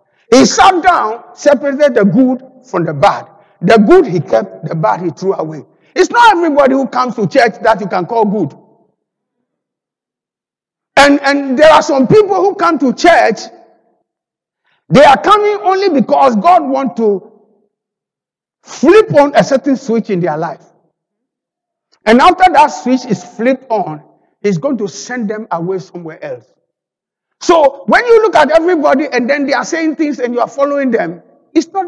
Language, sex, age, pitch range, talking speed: English, male, 50-69, 210-330 Hz, 170 wpm